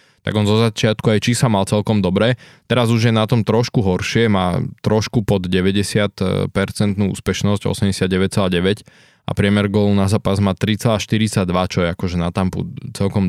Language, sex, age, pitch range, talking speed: Slovak, male, 20-39, 95-110 Hz, 160 wpm